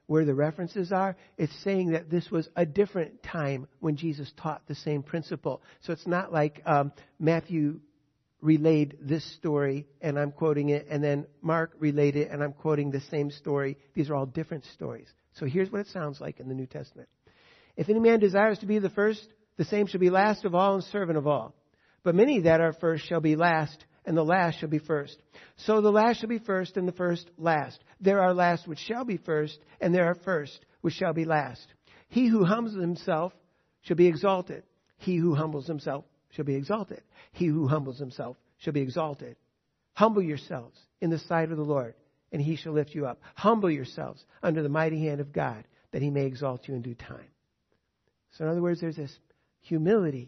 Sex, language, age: male, English, 50-69